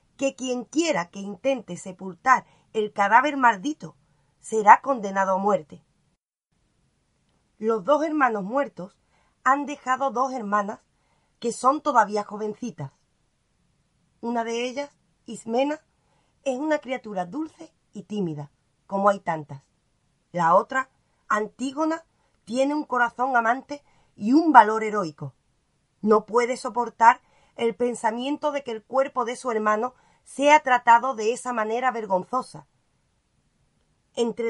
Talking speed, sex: 120 wpm, female